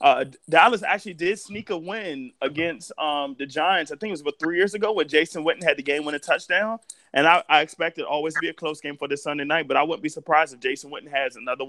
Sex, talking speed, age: male, 270 wpm, 20-39